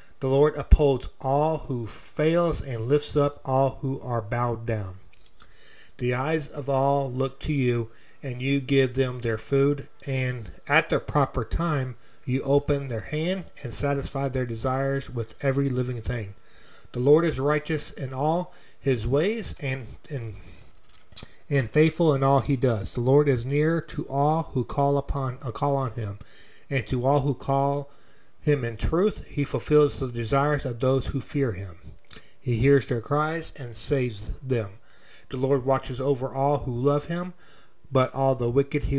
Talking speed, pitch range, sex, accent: 170 wpm, 125-145 Hz, male, American